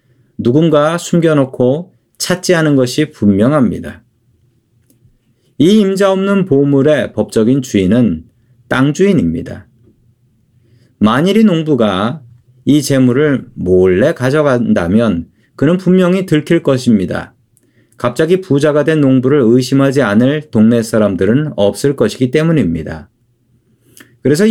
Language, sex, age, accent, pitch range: Korean, male, 40-59, native, 115-150 Hz